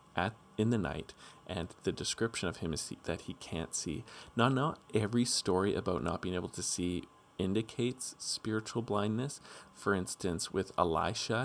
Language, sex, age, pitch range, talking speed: English, male, 40-59, 85-105 Hz, 160 wpm